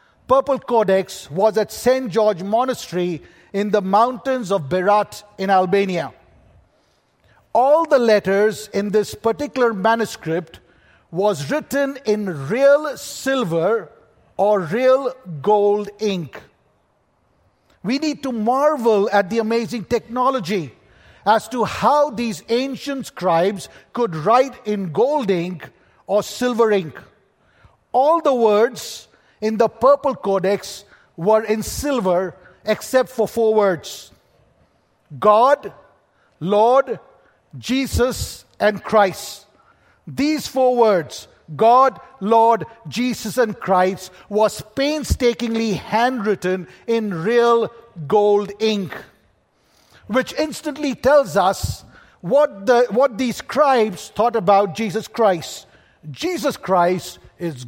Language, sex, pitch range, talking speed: English, male, 195-250 Hz, 105 wpm